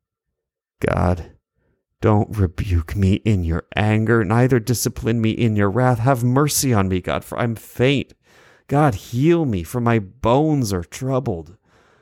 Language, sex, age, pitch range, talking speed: English, male, 30-49, 90-145 Hz, 145 wpm